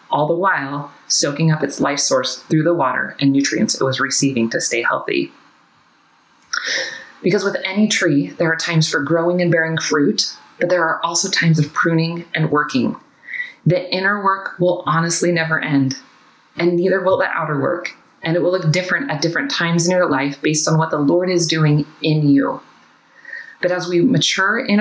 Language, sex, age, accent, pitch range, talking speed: English, female, 30-49, American, 150-180 Hz, 190 wpm